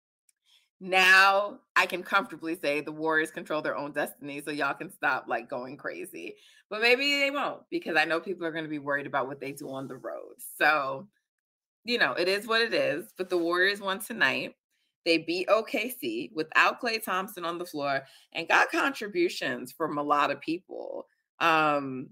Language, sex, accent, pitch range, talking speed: English, female, American, 155-240 Hz, 185 wpm